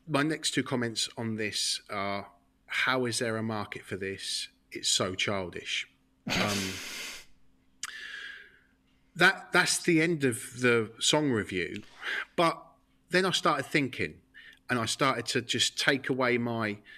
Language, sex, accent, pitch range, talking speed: English, male, British, 100-125 Hz, 140 wpm